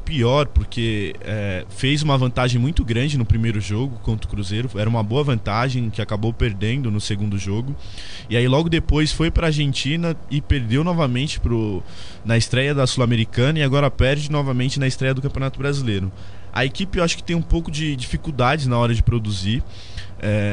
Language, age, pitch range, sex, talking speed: Portuguese, 20-39, 105-135 Hz, male, 185 wpm